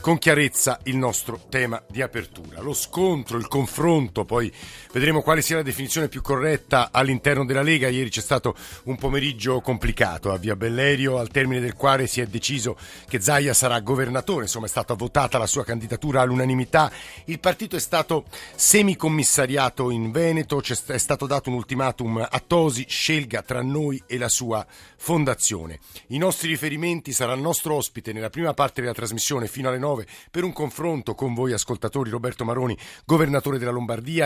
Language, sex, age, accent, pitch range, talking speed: Italian, male, 50-69, native, 120-145 Hz, 170 wpm